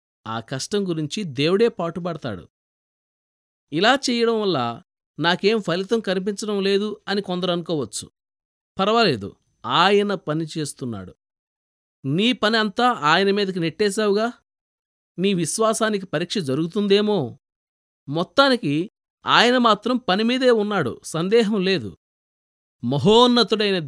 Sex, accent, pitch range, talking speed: male, native, 150-215 Hz, 95 wpm